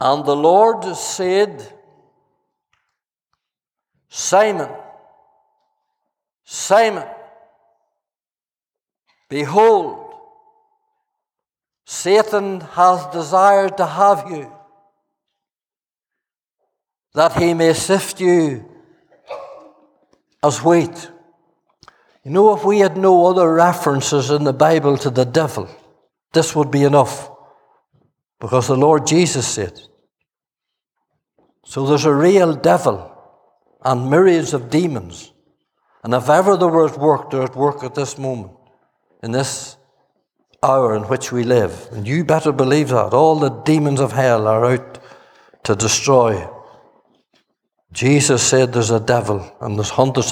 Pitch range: 130-180 Hz